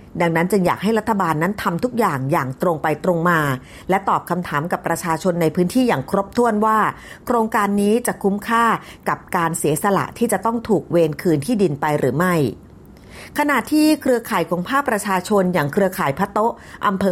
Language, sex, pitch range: Thai, female, 170-220 Hz